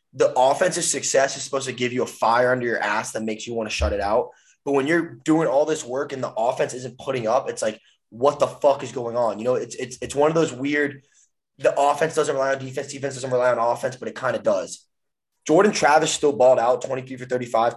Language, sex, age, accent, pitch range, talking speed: English, male, 20-39, American, 115-155 Hz, 255 wpm